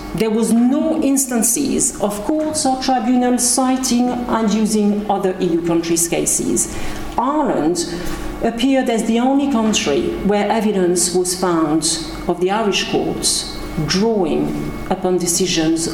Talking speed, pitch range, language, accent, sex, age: 120 wpm, 175-230 Hz, English, French, female, 50-69